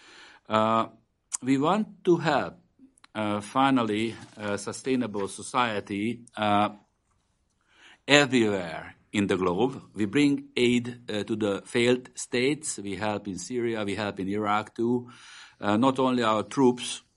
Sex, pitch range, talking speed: male, 95-115 Hz, 130 wpm